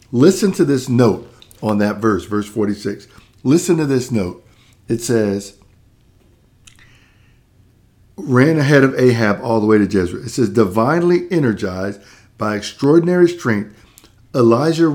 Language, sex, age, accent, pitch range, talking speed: English, male, 50-69, American, 105-135 Hz, 130 wpm